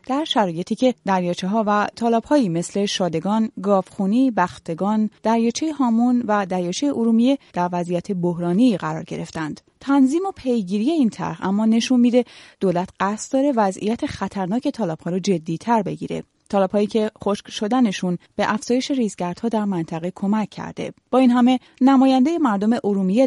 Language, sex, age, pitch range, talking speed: Persian, female, 30-49, 180-245 Hz, 145 wpm